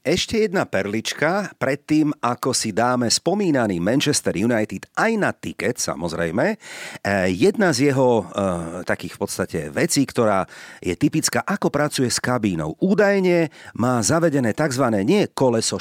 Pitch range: 110-160 Hz